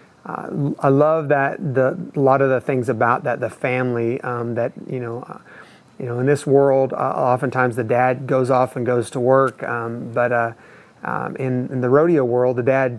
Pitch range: 120-130 Hz